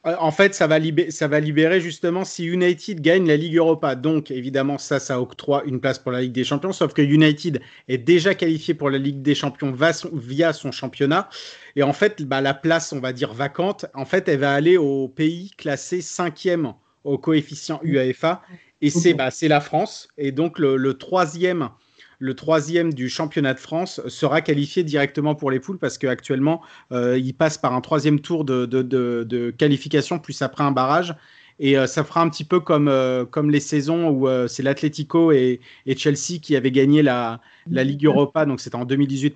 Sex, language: male, French